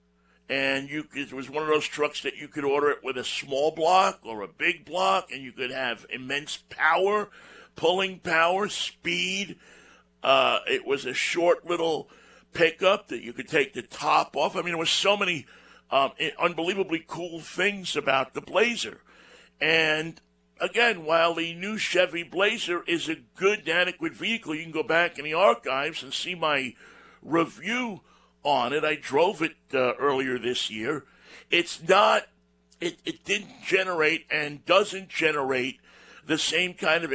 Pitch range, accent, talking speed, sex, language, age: 120-180 Hz, American, 165 wpm, male, English, 60-79